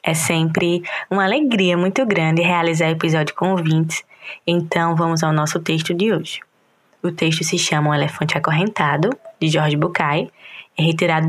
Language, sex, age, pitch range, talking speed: Portuguese, female, 10-29, 160-210 Hz, 155 wpm